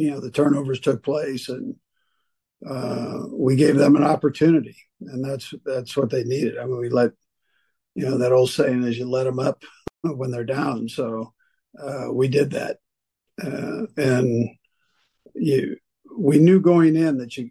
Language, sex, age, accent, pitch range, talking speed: English, male, 50-69, American, 125-155 Hz, 170 wpm